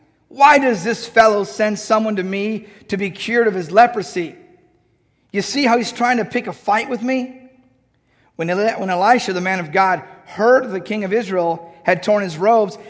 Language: English